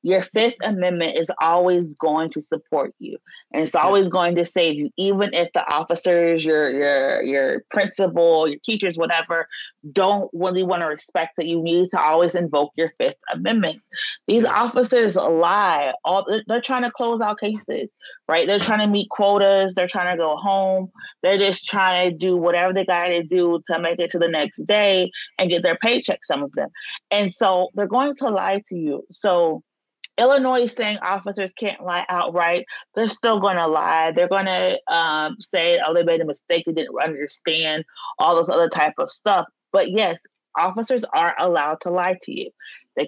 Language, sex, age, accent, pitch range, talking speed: English, female, 30-49, American, 170-210 Hz, 190 wpm